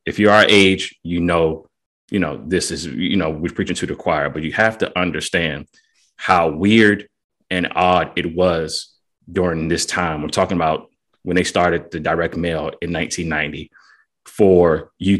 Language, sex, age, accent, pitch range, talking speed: English, male, 30-49, American, 85-105 Hz, 175 wpm